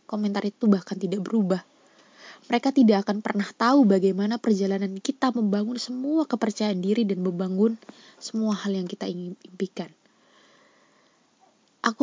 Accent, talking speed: native, 130 wpm